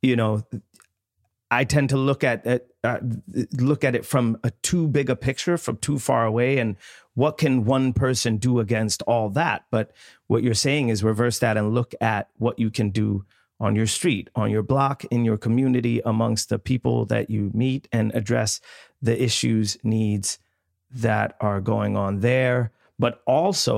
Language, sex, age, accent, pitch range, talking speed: English, male, 30-49, American, 110-125 Hz, 180 wpm